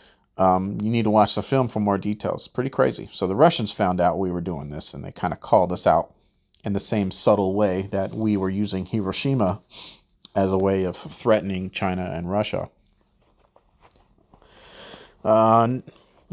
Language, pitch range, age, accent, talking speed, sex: English, 95-130 Hz, 40-59, American, 175 wpm, male